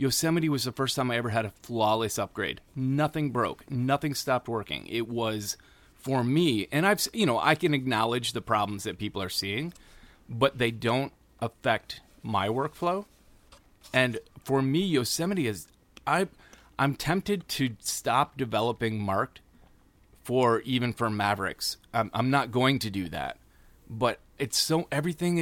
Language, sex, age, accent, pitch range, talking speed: English, male, 30-49, American, 110-140 Hz, 155 wpm